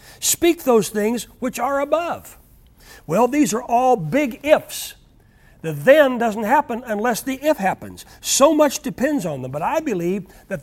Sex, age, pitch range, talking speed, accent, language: male, 60-79, 175-265 Hz, 165 wpm, American, English